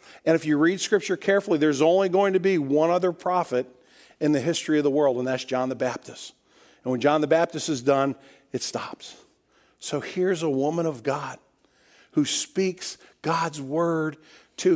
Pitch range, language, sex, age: 155-205 Hz, English, male, 50-69